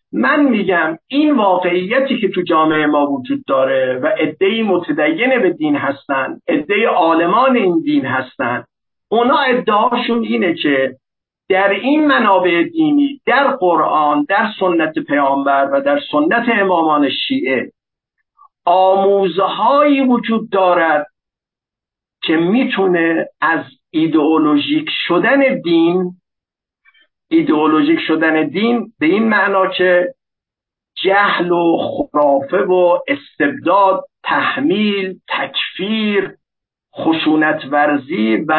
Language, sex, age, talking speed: Persian, male, 50-69, 100 wpm